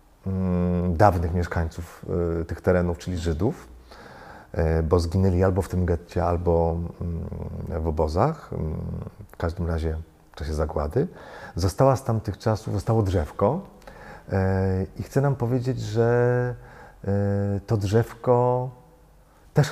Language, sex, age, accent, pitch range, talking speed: Polish, male, 40-59, native, 85-120 Hz, 105 wpm